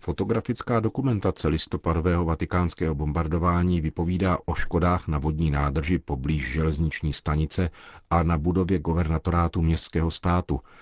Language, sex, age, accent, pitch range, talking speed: Czech, male, 50-69, native, 75-90 Hz, 110 wpm